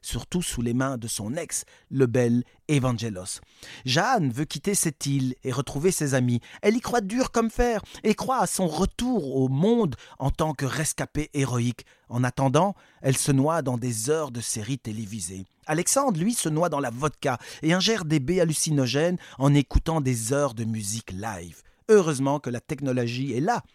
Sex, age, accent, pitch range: male, 40-59, French, 120-160 Hz